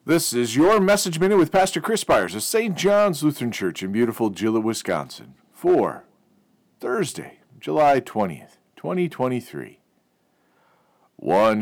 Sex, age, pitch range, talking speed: male, 50-69, 105-150 Hz, 125 wpm